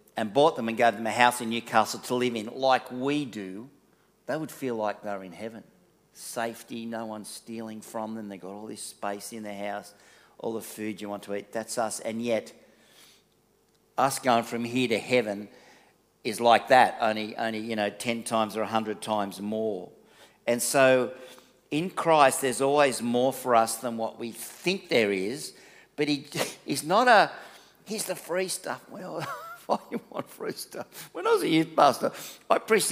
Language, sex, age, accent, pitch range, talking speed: English, male, 50-69, Australian, 110-150 Hz, 190 wpm